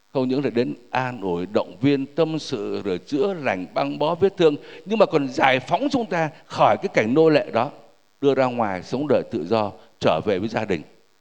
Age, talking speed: 60-79, 225 wpm